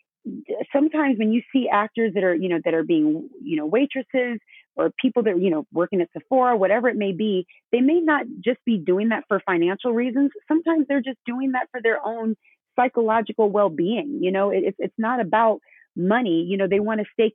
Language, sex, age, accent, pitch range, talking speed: English, female, 30-49, American, 195-250 Hz, 210 wpm